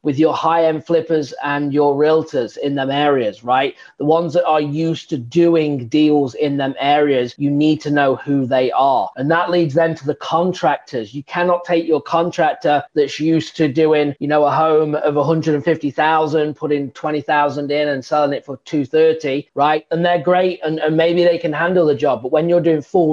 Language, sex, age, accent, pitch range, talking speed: English, male, 30-49, British, 140-160 Hz, 195 wpm